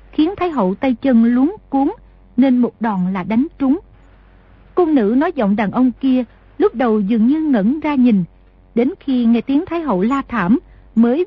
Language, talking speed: Vietnamese, 190 wpm